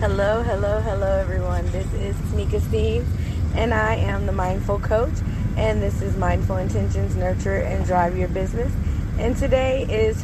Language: English